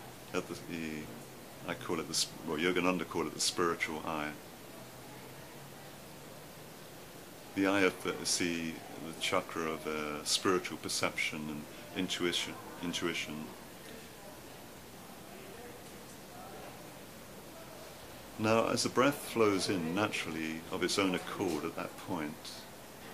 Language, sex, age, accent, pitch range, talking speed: English, male, 50-69, British, 75-90 Hz, 105 wpm